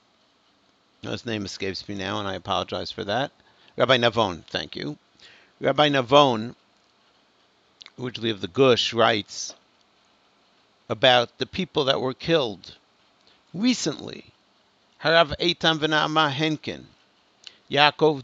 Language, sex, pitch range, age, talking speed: English, male, 130-180 Hz, 60-79, 110 wpm